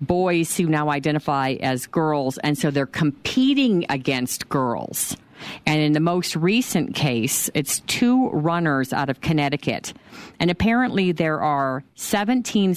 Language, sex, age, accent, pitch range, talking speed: English, female, 50-69, American, 135-170 Hz, 135 wpm